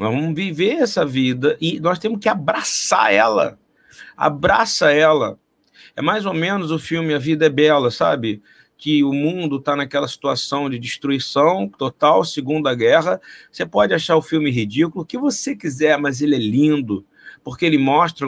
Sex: male